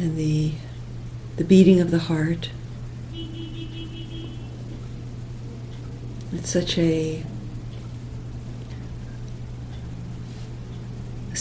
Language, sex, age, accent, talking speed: English, female, 60-79, American, 60 wpm